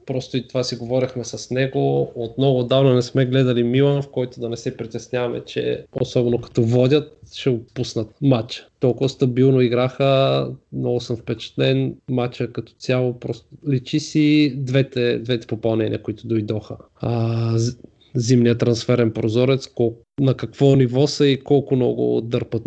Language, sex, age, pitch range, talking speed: Bulgarian, male, 20-39, 115-135 Hz, 150 wpm